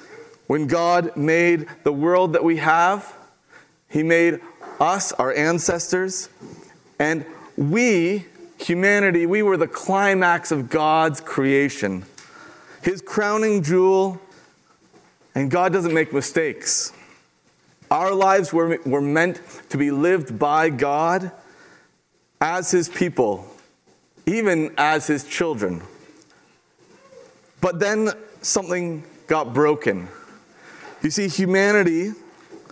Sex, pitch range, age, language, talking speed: male, 155-185 Hz, 40-59, English, 105 wpm